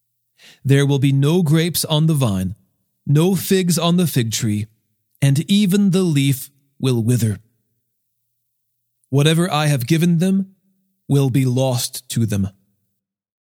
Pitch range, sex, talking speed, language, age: 120-175 Hz, male, 135 wpm, English, 30-49